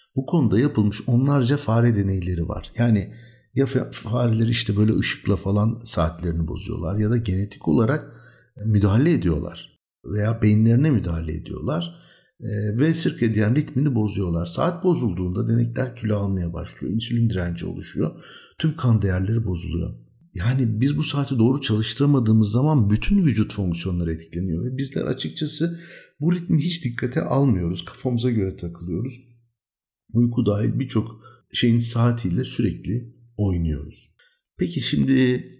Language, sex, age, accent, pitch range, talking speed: Turkish, male, 60-79, native, 95-130 Hz, 125 wpm